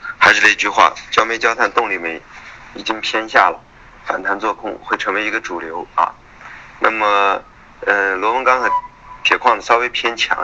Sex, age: male, 20-39